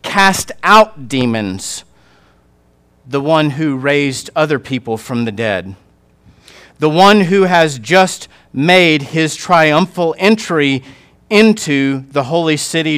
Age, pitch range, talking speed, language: 40-59, 115-165 Hz, 115 wpm, English